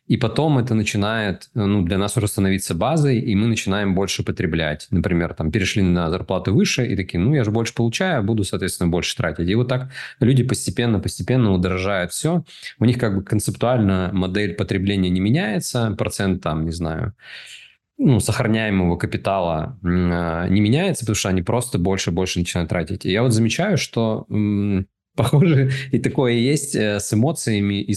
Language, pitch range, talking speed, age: Russian, 95-120 Hz, 165 wpm, 20-39